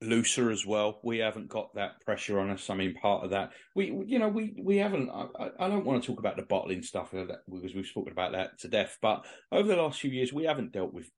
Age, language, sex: 30-49, English, male